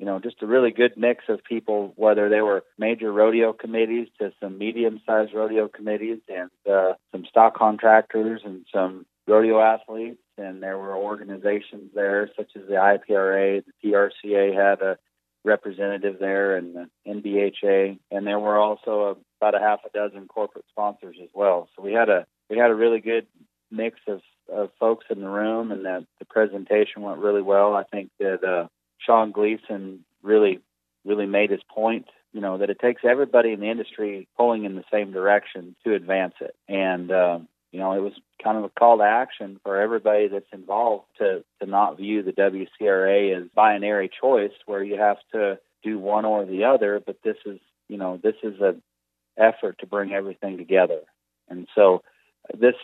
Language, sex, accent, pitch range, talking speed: English, male, American, 95-110 Hz, 185 wpm